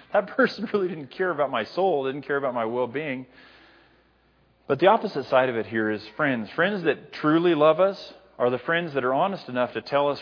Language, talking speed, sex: English, 215 wpm, male